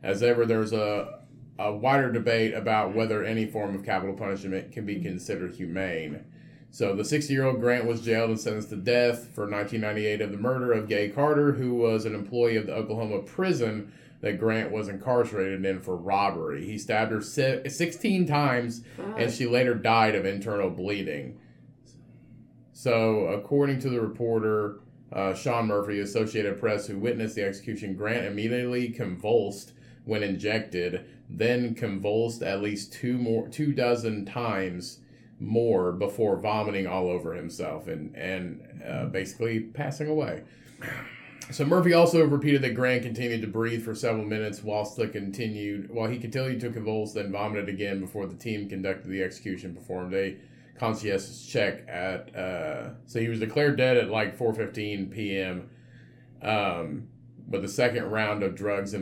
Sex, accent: male, American